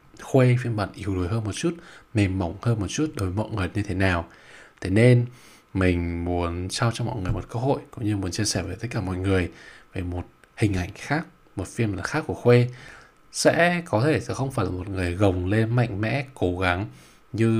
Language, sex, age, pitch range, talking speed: Vietnamese, male, 20-39, 95-120 Hz, 230 wpm